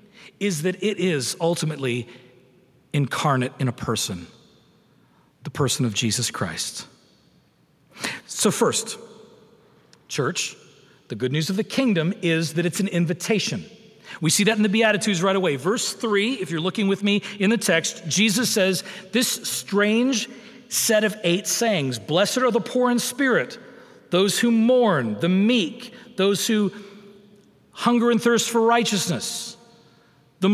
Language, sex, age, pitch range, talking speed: English, male, 40-59, 165-225 Hz, 145 wpm